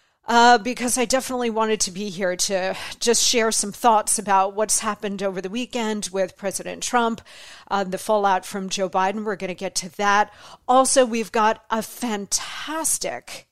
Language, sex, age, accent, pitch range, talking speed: English, female, 40-59, American, 195-235 Hz, 175 wpm